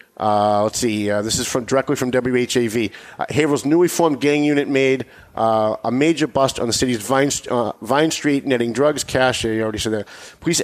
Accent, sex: American, male